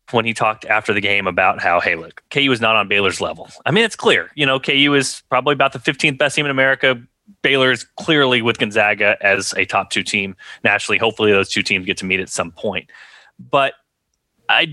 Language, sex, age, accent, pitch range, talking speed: English, male, 30-49, American, 115-150 Hz, 225 wpm